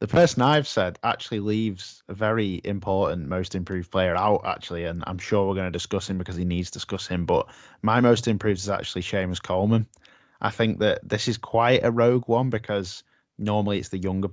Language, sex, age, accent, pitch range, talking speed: English, male, 10-29, British, 95-115 Hz, 210 wpm